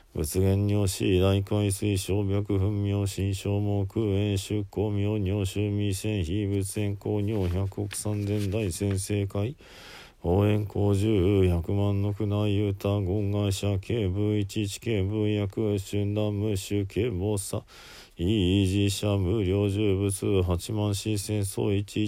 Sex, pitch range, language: male, 100-105 Hz, Japanese